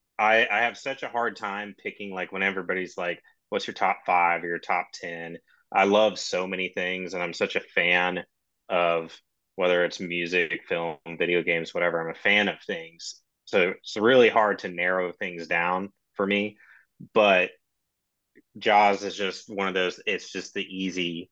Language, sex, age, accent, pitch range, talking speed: English, male, 30-49, American, 85-95 Hz, 180 wpm